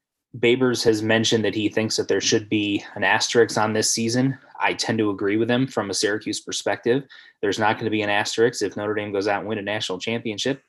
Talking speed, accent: 235 wpm, American